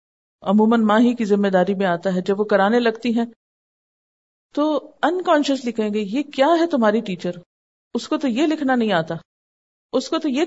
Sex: female